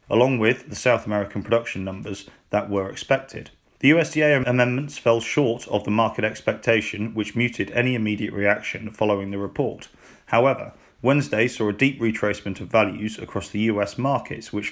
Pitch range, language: 105-125 Hz, English